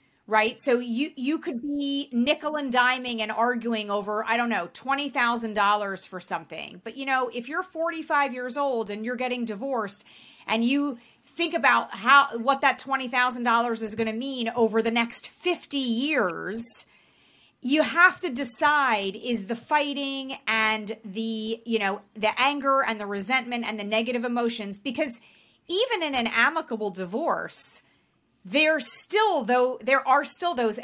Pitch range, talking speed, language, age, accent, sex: 220-280 Hz, 155 wpm, English, 30-49, American, female